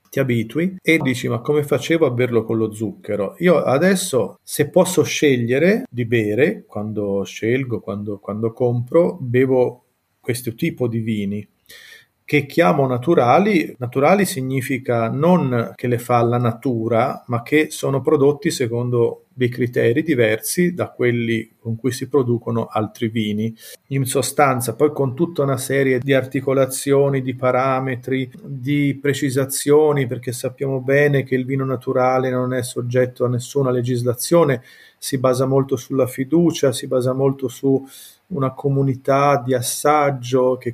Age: 40-59